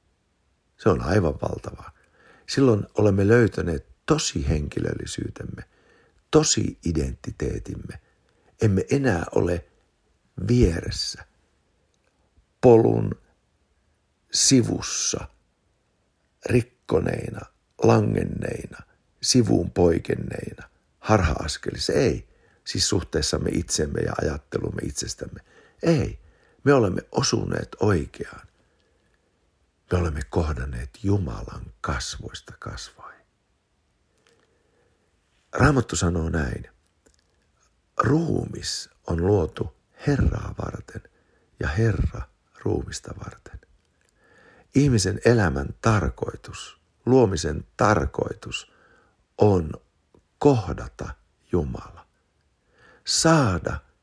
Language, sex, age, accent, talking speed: Finnish, male, 60-79, native, 70 wpm